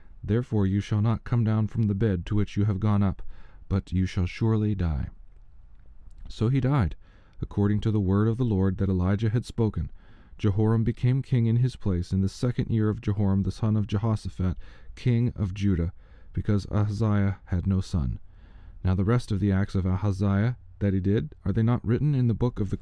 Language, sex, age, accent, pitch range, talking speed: English, male, 40-59, American, 95-110 Hz, 205 wpm